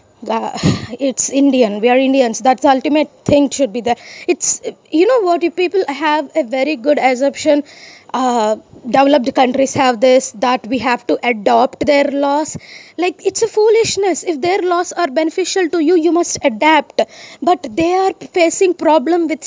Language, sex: English, female